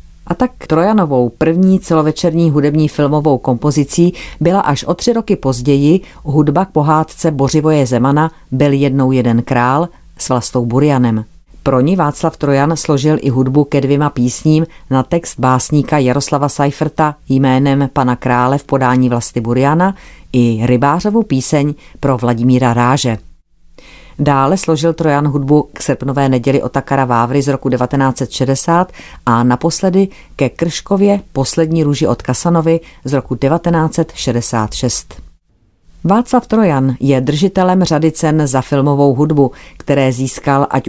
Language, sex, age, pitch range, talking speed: Czech, female, 40-59, 130-160 Hz, 130 wpm